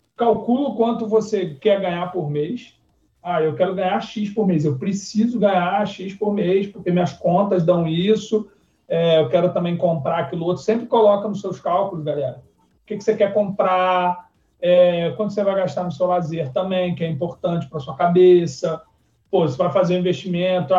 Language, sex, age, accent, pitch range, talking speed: Portuguese, male, 40-59, Brazilian, 160-205 Hz, 195 wpm